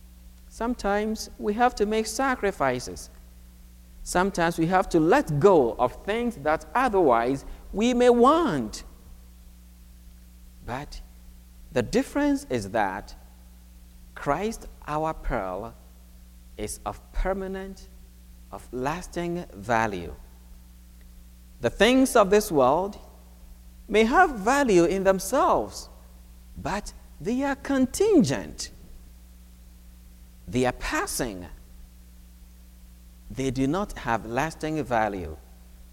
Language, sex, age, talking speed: English, male, 50-69, 95 wpm